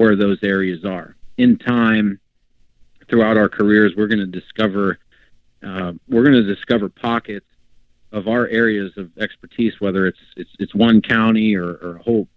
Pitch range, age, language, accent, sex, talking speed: 95-115 Hz, 40-59, English, American, male, 160 wpm